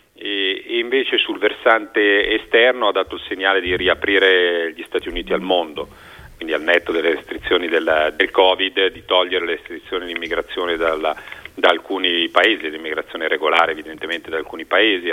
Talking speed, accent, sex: 155 wpm, native, male